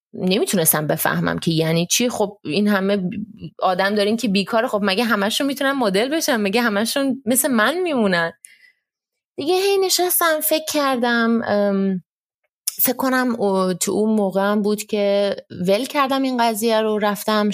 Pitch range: 185-250 Hz